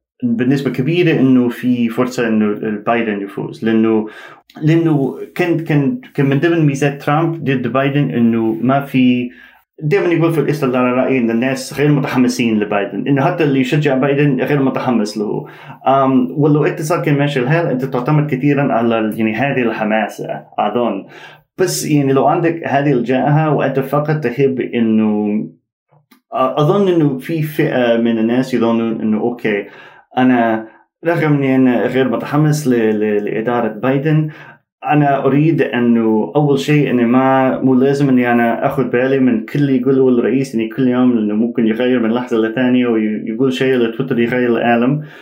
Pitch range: 120-145 Hz